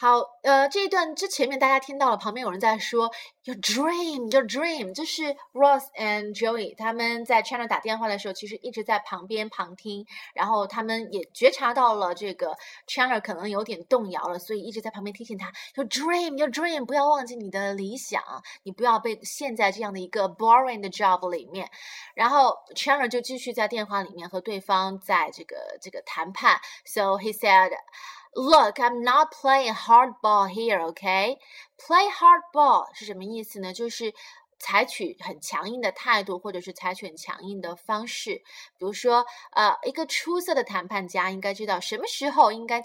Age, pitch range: 20-39, 200-275 Hz